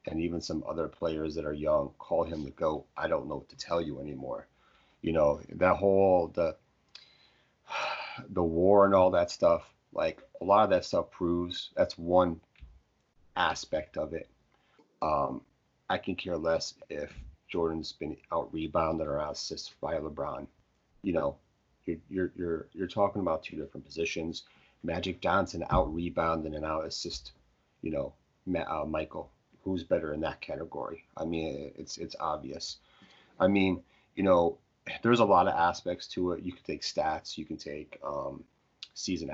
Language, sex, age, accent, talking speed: English, male, 30-49, American, 165 wpm